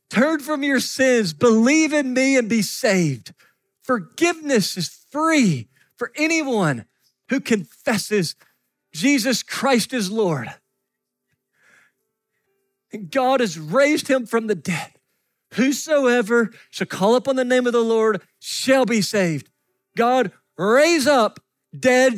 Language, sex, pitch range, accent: English, male, 155-255 Hz, American